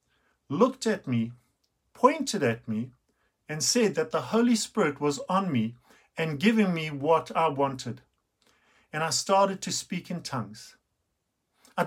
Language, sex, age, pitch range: English, male, 50-69, 145-210 Hz